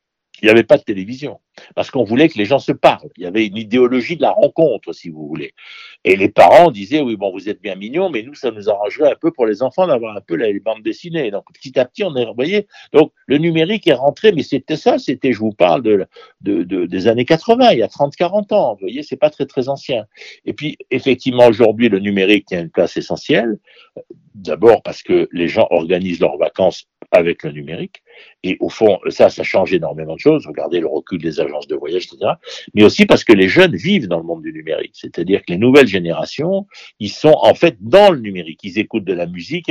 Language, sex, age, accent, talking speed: French, male, 60-79, French, 235 wpm